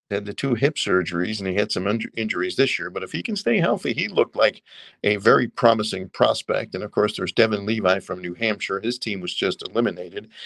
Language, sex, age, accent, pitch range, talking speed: English, male, 50-69, American, 100-125 Hz, 225 wpm